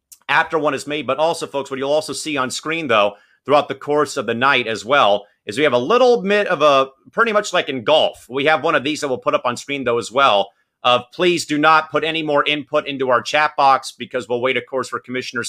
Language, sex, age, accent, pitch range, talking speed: English, male, 30-49, American, 125-155 Hz, 265 wpm